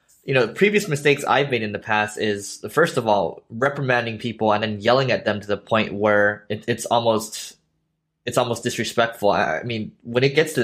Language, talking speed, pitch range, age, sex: English, 205 wpm, 105-125 Hz, 20-39, male